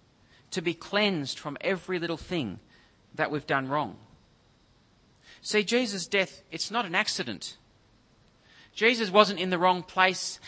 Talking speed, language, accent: 135 wpm, English, Australian